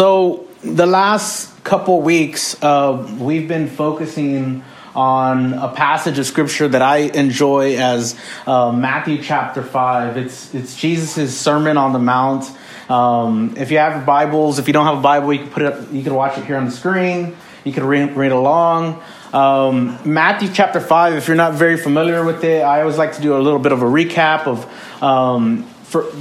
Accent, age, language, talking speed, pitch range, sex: American, 30-49, English, 195 wpm, 135-170 Hz, male